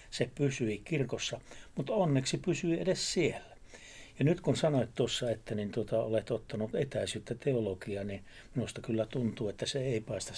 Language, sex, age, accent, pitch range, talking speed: Finnish, male, 60-79, native, 105-130 Hz, 150 wpm